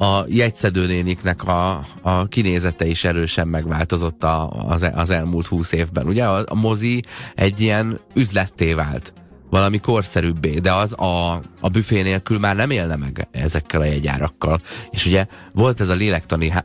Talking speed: 155 wpm